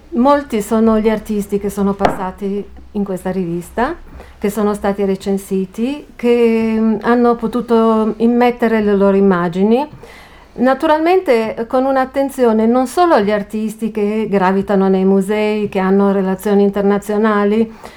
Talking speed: 120 wpm